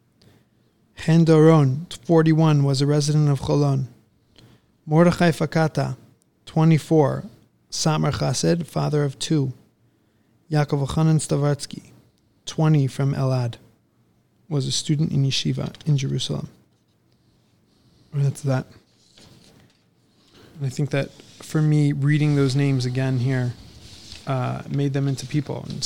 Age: 20-39